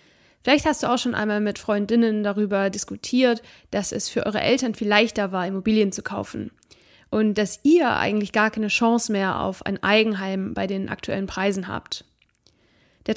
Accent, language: German, German